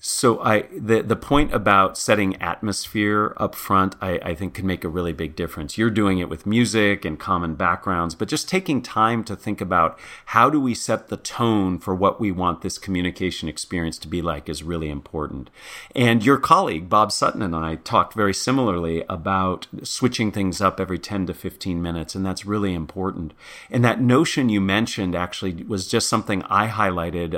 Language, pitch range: English, 90-115 Hz